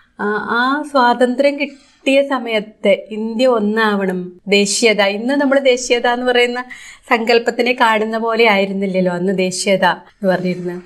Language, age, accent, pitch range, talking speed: Malayalam, 30-49, native, 205-245 Hz, 110 wpm